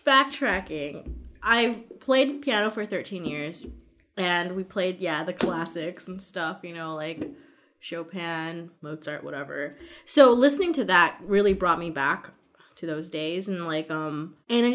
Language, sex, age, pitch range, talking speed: English, female, 20-39, 160-220 Hz, 150 wpm